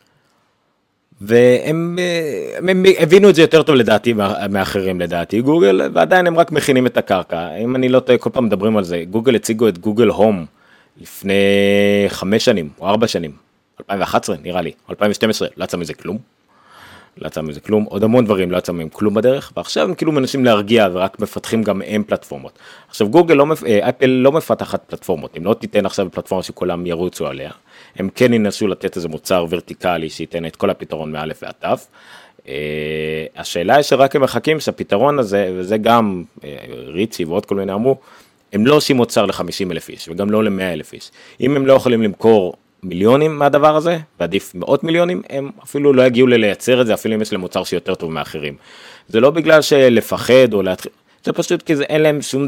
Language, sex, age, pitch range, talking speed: Hebrew, male, 30-49, 95-140 Hz, 185 wpm